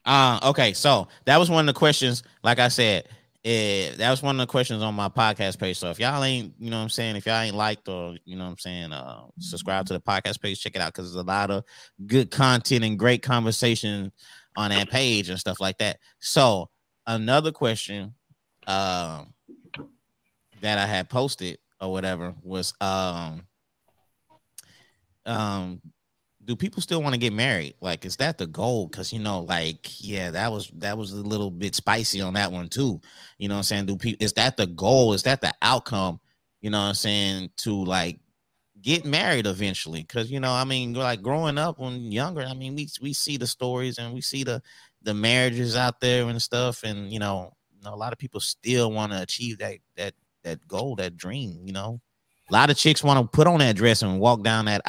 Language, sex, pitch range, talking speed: English, male, 95-125 Hz, 215 wpm